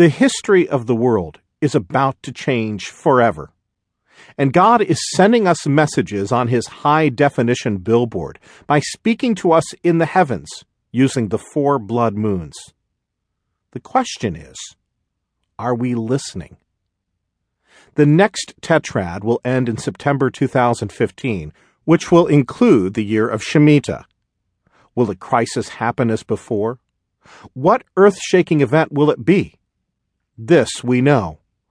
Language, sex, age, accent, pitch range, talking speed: English, male, 40-59, American, 115-170 Hz, 130 wpm